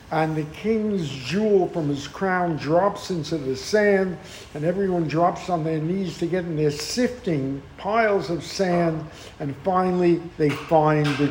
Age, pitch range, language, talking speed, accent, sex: 60-79, 145-200 Hz, English, 160 wpm, American, male